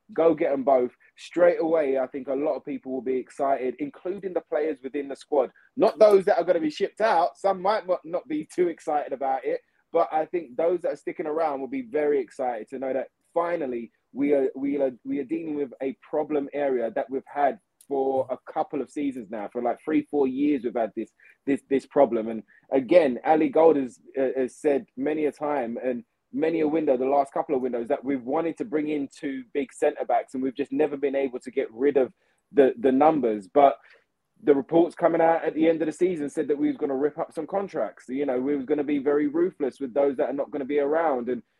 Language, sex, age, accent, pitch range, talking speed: English, male, 20-39, British, 135-165 Hz, 240 wpm